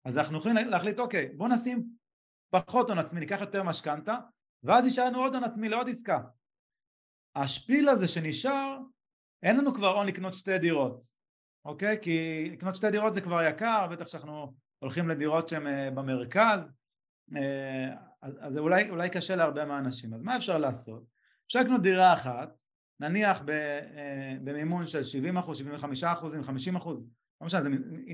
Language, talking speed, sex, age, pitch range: Hebrew, 140 wpm, male, 30-49, 140-200 Hz